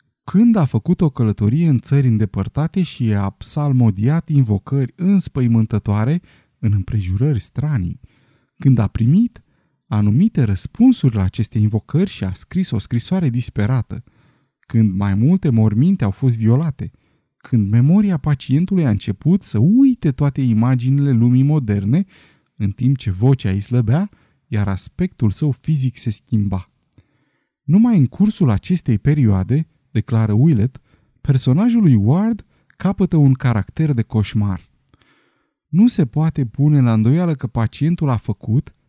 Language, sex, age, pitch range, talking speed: Romanian, male, 20-39, 110-155 Hz, 130 wpm